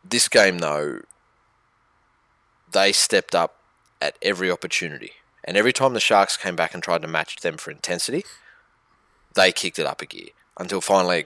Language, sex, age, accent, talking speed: English, male, 20-39, Australian, 170 wpm